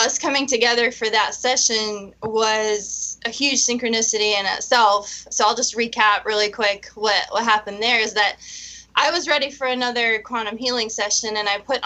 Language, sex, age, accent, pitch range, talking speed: English, female, 20-39, American, 215-275 Hz, 175 wpm